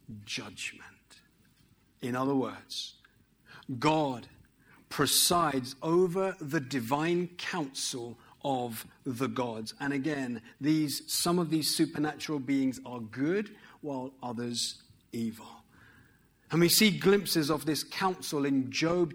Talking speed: 110 wpm